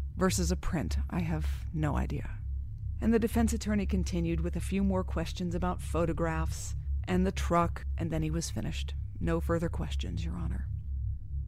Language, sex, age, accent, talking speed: English, female, 40-59, American, 165 wpm